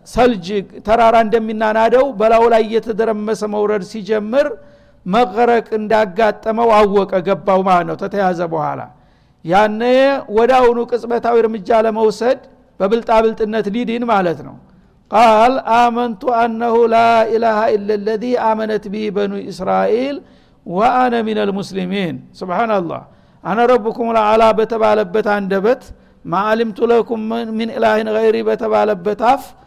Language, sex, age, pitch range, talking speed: Amharic, male, 60-79, 200-235 Hz, 110 wpm